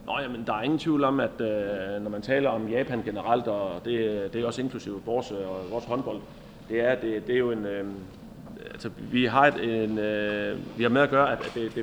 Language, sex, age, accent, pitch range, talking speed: Danish, male, 30-49, native, 105-135 Hz, 190 wpm